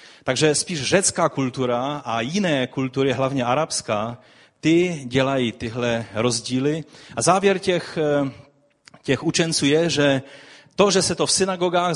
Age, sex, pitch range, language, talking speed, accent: 30-49, male, 110-150 Hz, Czech, 130 wpm, native